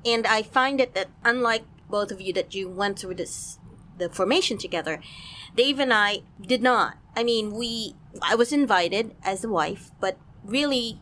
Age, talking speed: 30-49, 175 wpm